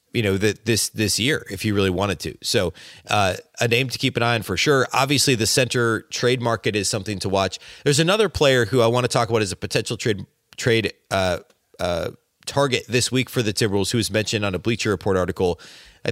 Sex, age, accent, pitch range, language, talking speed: male, 30-49, American, 105-125 Hz, English, 225 wpm